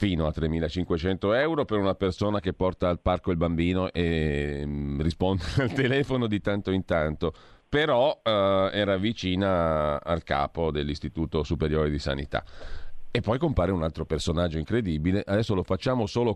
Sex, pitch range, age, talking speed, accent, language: male, 85-110 Hz, 40-59, 155 wpm, native, Italian